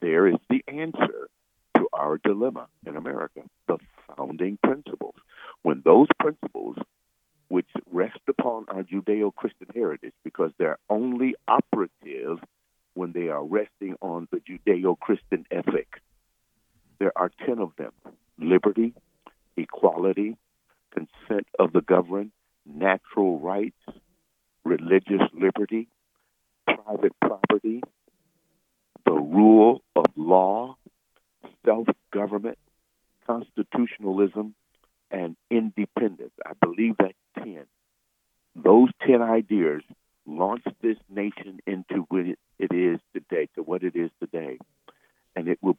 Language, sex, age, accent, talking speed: English, male, 60-79, American, 105 wpm